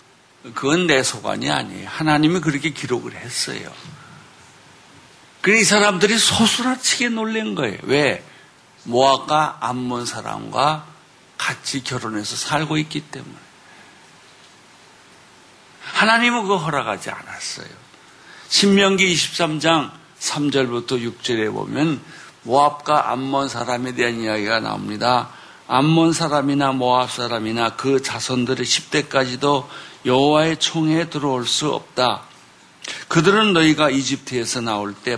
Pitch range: 125-155 Hz